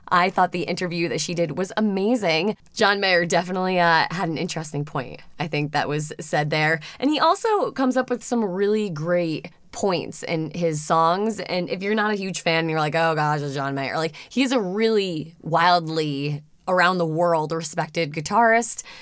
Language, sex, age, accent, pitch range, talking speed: English, female, 20-39, American, 160-205 Hz, 185 wpm